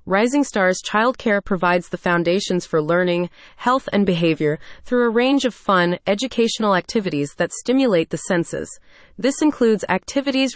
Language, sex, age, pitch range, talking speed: English, female, 30-49, 175-235 Hz, 140 wpm